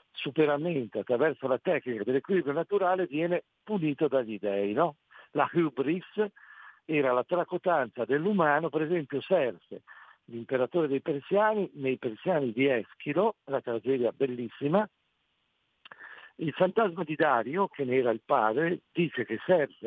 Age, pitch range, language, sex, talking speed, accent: 50-69, 125-165 Hz, Italian, male, 125 wpm, native